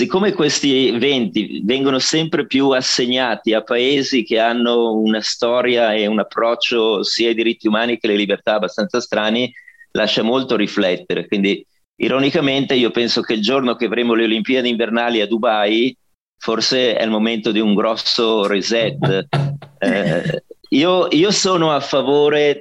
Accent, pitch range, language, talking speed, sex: native, 110-135 Hz, Italian, 150 wpm, male